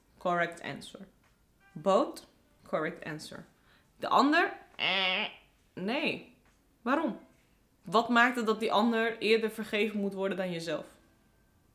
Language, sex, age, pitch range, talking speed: Dutch, female, 20-39, 155-200 Hz, 110 wpm